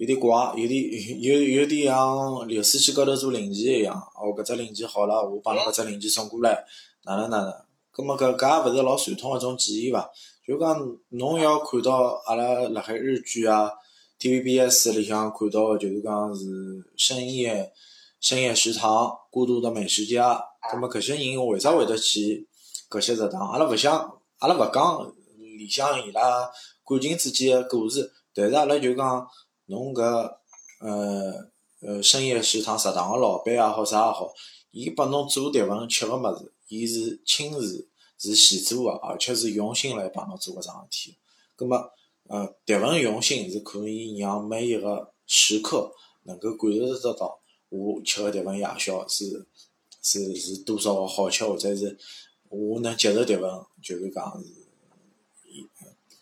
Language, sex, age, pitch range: Chinese, male, 20-39, 105-130 Hz